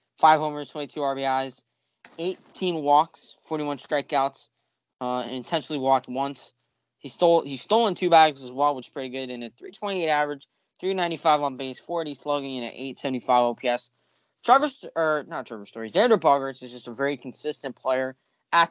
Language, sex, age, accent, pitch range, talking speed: English, male, 10-29, American, 125-155 Hz, 175 wpm